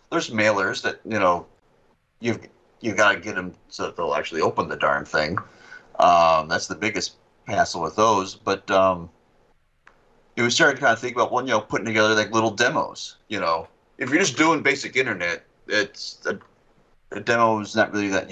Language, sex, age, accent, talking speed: English, male, 30-49, American, 200 wpm